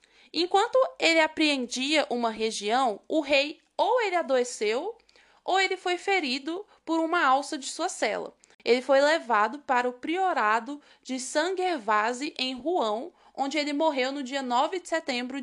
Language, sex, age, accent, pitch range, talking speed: Portuguese, female, 20-39, Brazilian, 245-330 Hz, 150 wpm